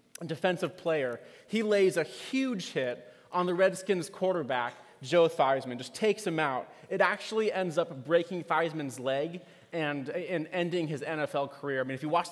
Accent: American